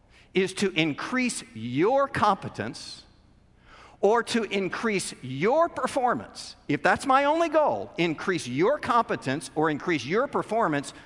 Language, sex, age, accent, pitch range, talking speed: English, male, 50-69, American, 110-175 Hz, 120 wpm